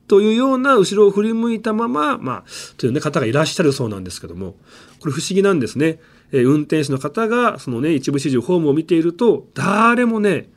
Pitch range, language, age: 120-200 Hz, Japanese, 40-59